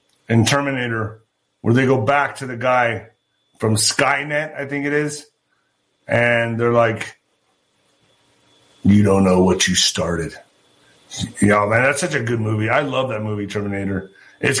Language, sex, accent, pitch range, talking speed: English, male, American, 130-180 Hz, 150 wpm